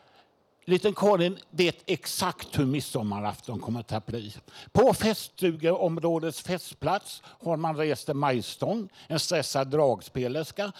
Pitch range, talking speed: 130-175 Hz, 110 wpm